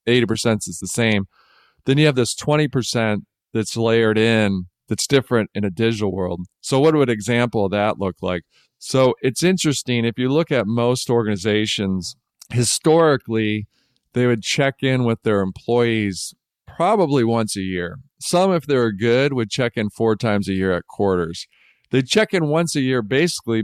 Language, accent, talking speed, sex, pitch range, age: English, American, 175 wpm, male, 105-130 Hz, 40-59